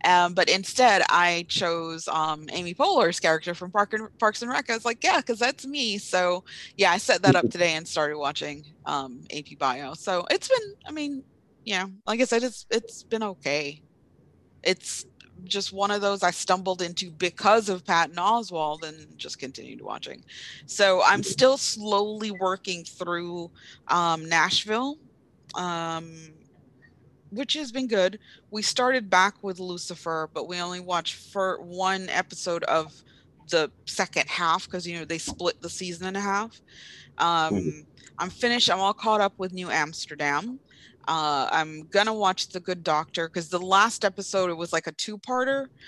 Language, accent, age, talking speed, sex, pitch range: English, American, 30-49, 165 wpm, female, 165-210 Hz